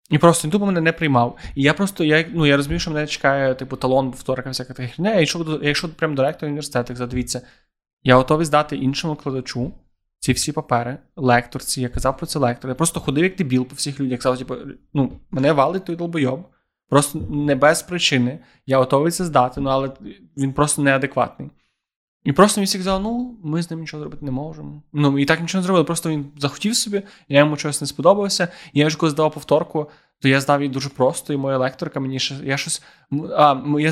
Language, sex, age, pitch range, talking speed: Ukrainian, male, 20-39, 130-160 Hz, 215 wpm